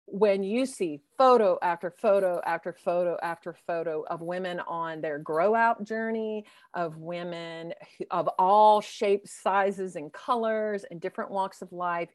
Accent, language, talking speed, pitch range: American, English, 155 wpm, 175-220 Hz